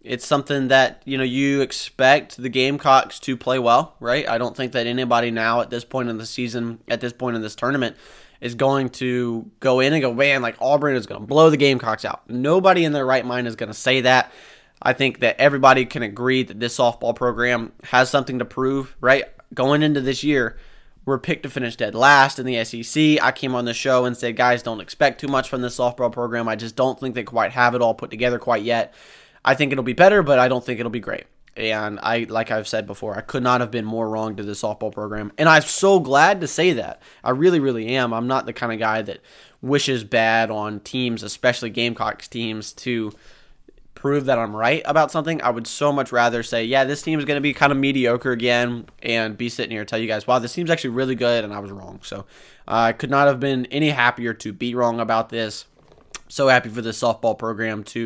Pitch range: 115-135 Hz